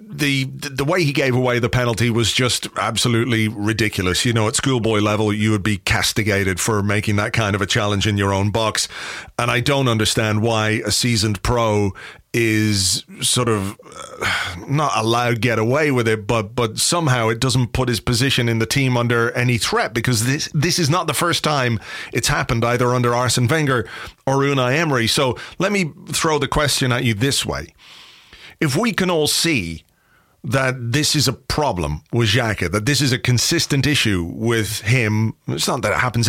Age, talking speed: 30-49, 190 wpm